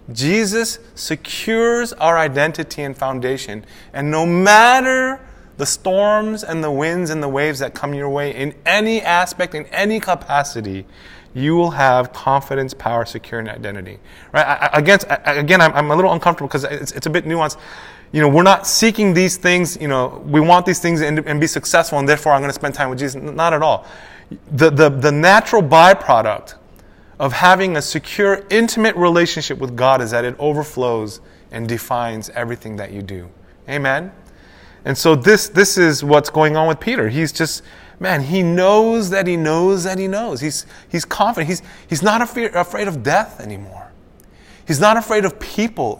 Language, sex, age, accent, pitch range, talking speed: English, male, 20-39, American, 135-190 Hz, 175 wpm